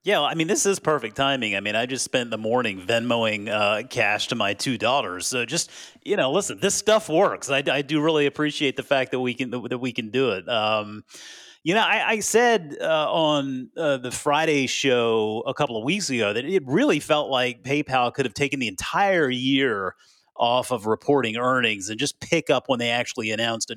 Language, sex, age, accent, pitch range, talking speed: English, male, 30-49, American, 125-160 Hz, 215 wpm